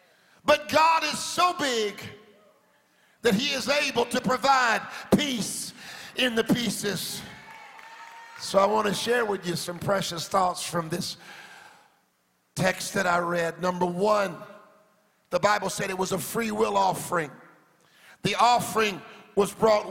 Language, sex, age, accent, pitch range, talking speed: English, male, 50-69, American, 200-260 Hz, 140 wpm